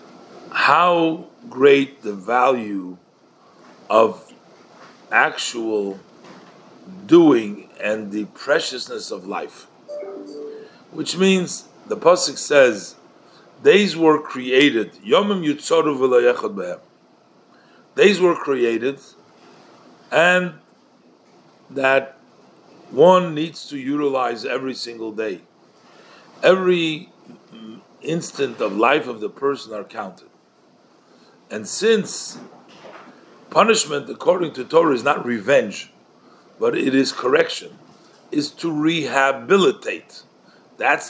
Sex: male